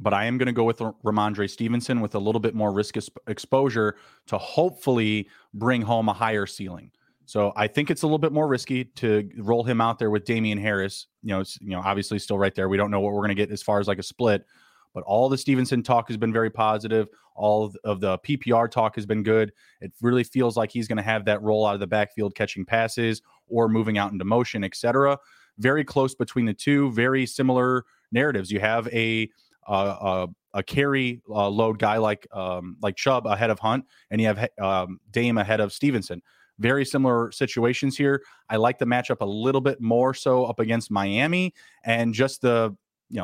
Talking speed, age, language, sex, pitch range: 215 wpm, 30-49, English, male, 105-125 Hz